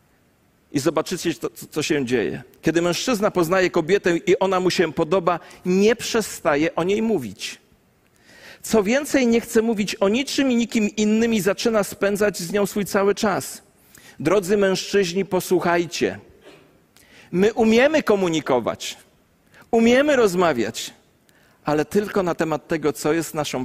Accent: native